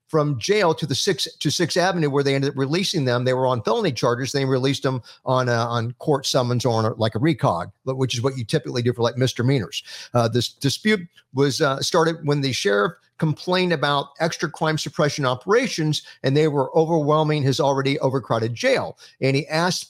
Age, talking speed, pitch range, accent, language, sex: 50-69, 205 wpm, 125-155 Hz, American, English, male